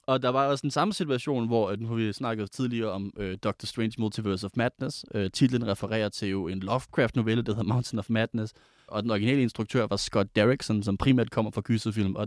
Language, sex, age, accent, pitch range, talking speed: Danish, male, 30-49, native, 100-120 Hz, 220 wpm